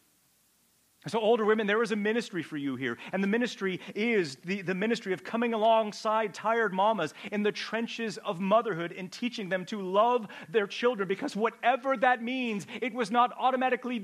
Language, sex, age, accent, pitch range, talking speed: English, male, 40-59, American, 135-225 Hz, 180 wpm